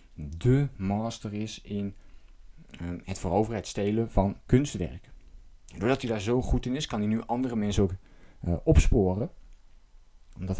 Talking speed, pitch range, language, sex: 155 wpm, 90-115 Hz, Dutch, male